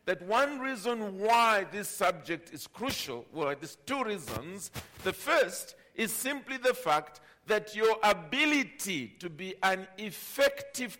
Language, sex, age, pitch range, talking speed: English, male, 50-69, 175-250 Hz, 135 wpm